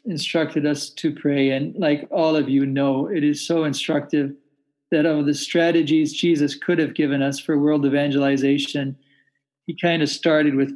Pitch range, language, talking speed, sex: 145-165 Hz, English, 175 wpm, male